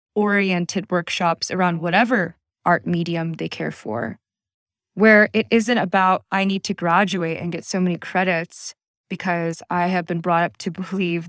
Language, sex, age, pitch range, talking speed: English, female, 20-39, 170-210 Hz, 160 wpm